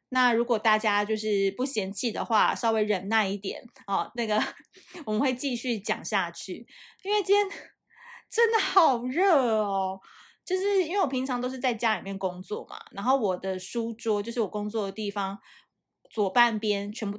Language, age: Chinese, 20-39